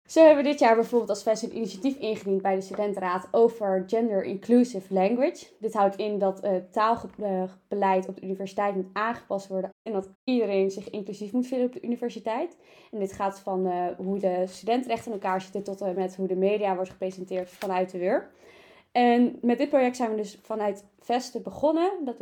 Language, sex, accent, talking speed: Dutch, female, Dutch, 195 wpm